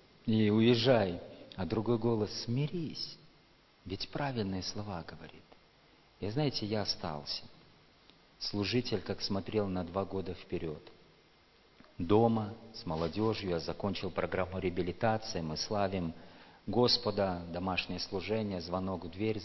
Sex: male